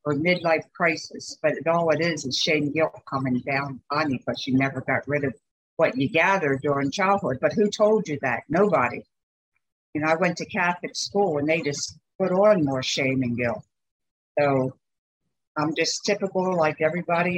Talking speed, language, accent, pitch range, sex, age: 190 wpm, English, American, 135-170 Hz, female, 60-79